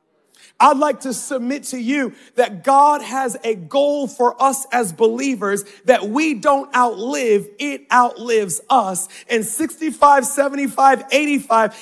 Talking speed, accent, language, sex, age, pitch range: 130 wpm, American, English, male, 30-49, 235-290 Hz